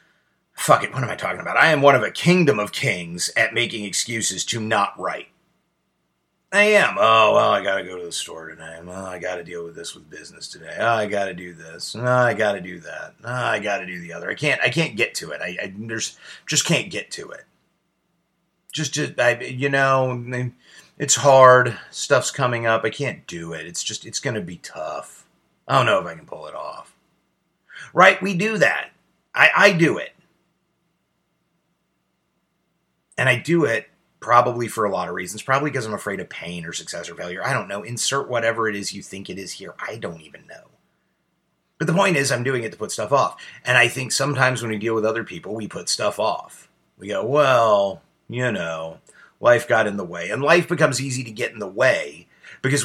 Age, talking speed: 30-49, 215 wpm